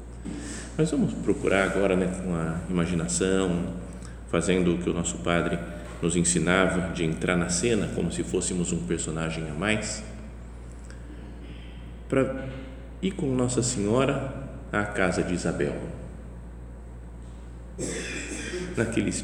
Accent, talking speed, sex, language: Brazilian, 110 wpm, male, Portuguese